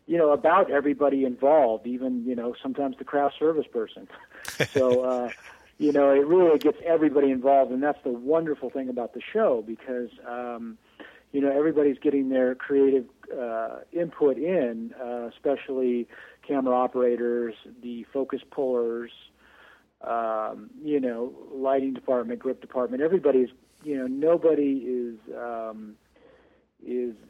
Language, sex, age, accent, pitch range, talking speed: English, male, 40-59, American, 120-140 Hz, 135 wpm